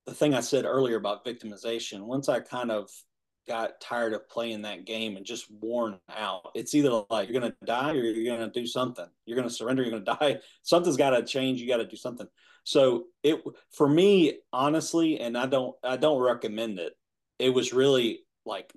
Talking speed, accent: 215 wpm, American